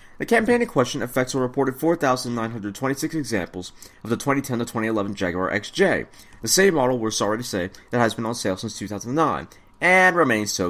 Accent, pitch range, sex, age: American, 105-150 Hz, male, 30-49